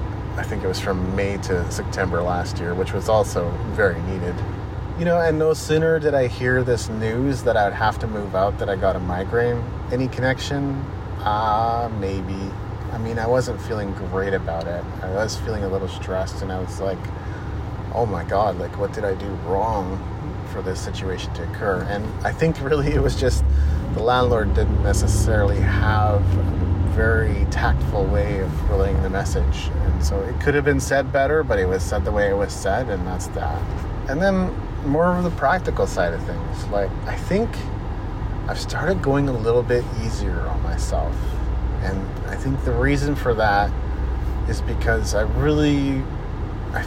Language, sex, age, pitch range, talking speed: English, male, 30-49, 95-115 Hz, 185 wpm